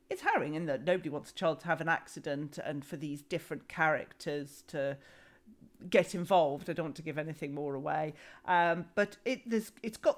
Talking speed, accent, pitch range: 200 wpm, British, 155-205 Hz